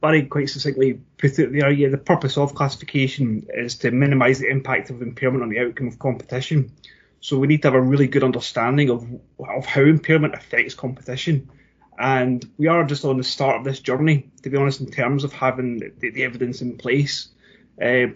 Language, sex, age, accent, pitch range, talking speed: English, male, 30-49, British, 130-150 Hz, 200 wpm